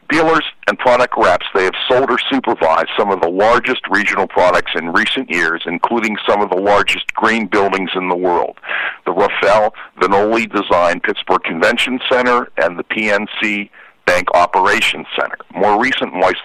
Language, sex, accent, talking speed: English, male, American, 160 wpm